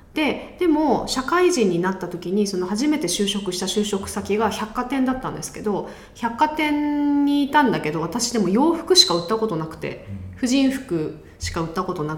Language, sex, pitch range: Japanese, female, 170-260 Hz